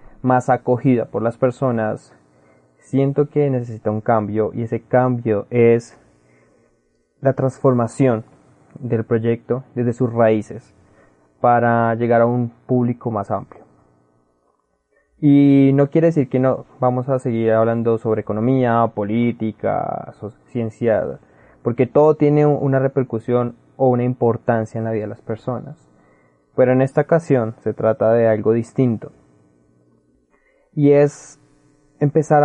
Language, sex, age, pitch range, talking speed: Spanish, male, 20-39, 110-135 Hz, 130 wpm